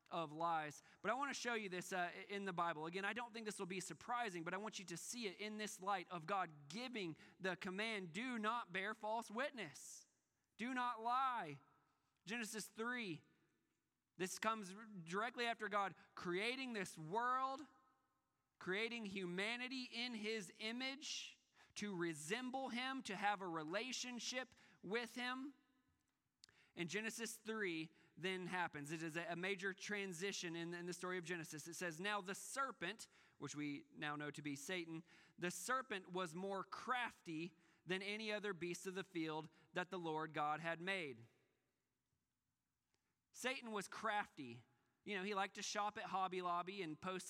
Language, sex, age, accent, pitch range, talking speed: English, male, 20-39, American, 175-230 Hz, 160 wpm